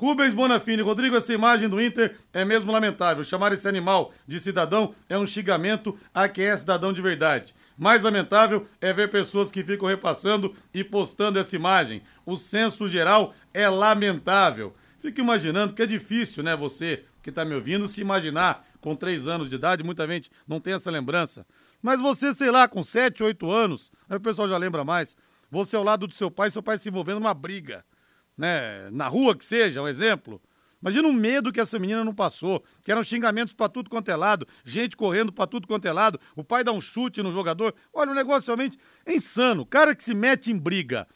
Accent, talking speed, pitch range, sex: Brazilian, 205 wpm, 190-240 Hz, male